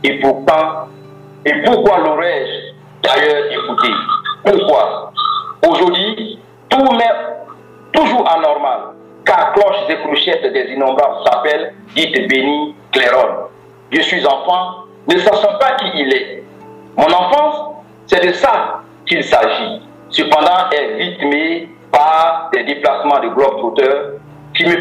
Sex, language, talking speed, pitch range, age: male, French, 125 wpm, 135-215 Hz, 50-69